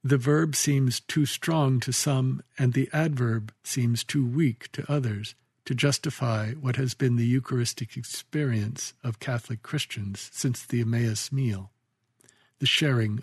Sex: male